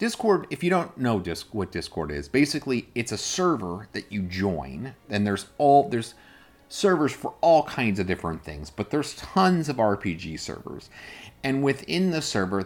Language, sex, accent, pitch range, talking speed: English, male, American, 90-130 Hz, 175 wpm